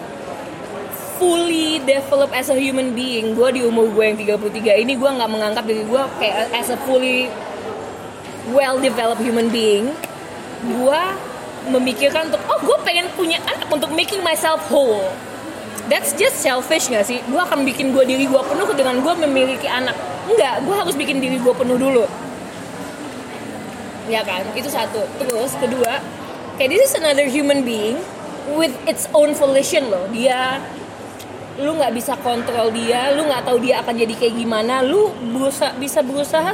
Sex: female